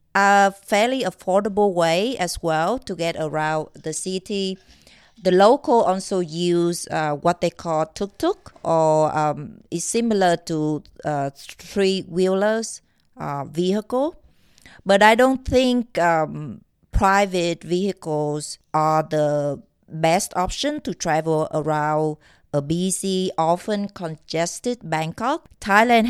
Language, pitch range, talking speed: English, 155-195 Hz, 115 wpm